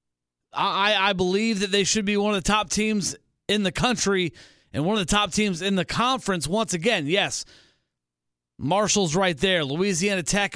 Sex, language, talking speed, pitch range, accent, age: male, English, 180 wpm, 160-210 Hz, American, 30-49